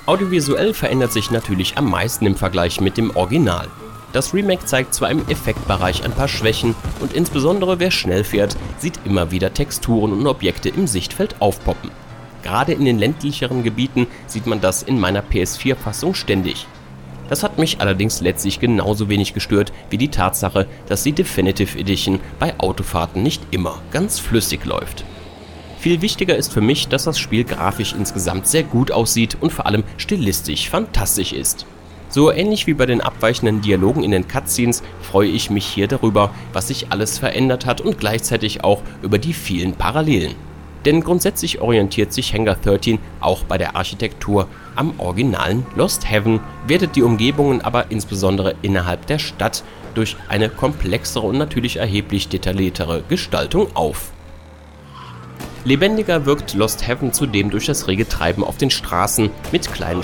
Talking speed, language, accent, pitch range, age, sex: 160 wpm, German, German, 95-130 Hz, 30-49, male